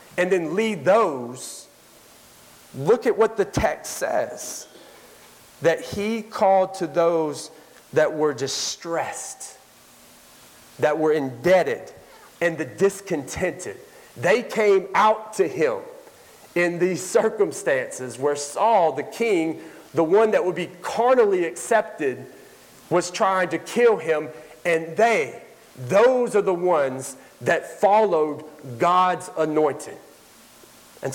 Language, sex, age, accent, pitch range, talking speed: English, male, 40-59, American, 160-210 Hz, 115 wpm